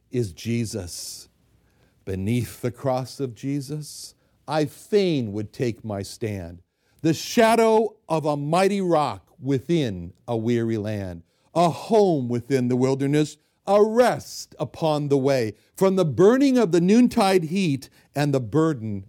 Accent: American